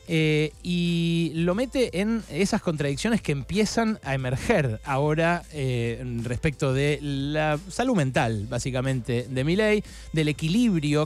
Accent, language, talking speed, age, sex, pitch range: Argentinian, Spanish, 125 wpm, 30-49, male, 130-180 Hz